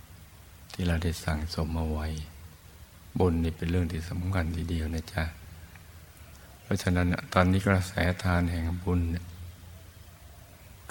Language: Thai